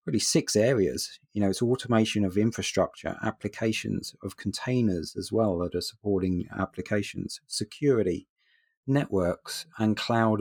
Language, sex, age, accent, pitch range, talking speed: English, male, 30-49, British, 95-115 Hz, 125 wpm